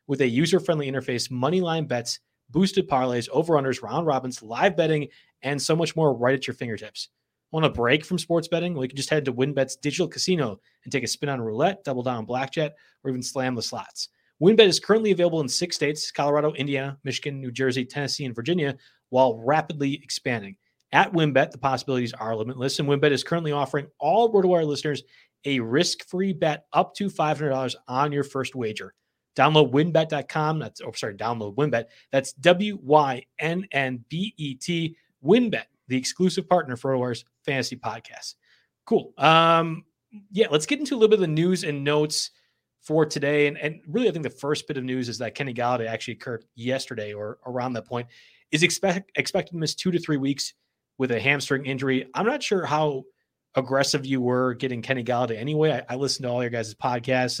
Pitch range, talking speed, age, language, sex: 130-160 Hz, 195 wpm, 30-49, English, male